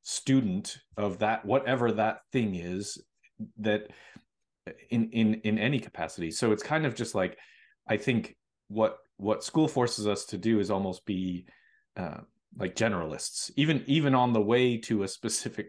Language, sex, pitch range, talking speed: English, male, 105-130 Hz, 160 wpm